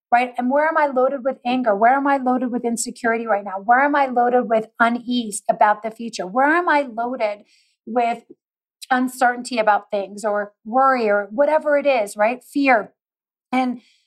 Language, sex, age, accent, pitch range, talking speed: English, female, 40-59, American, 210-260 Hz, 180 wpm